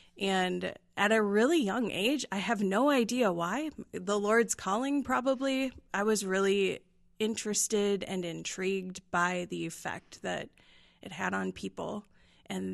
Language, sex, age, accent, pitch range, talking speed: English, female, 20-39, American, 175-210 Hz, 140 wpm